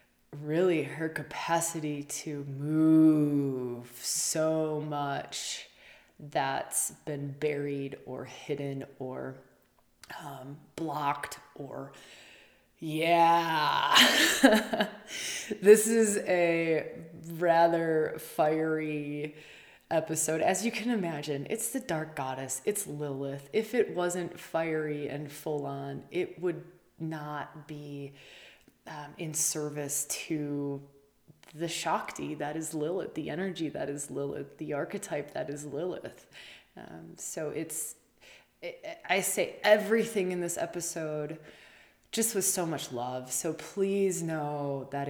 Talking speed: 105 wpm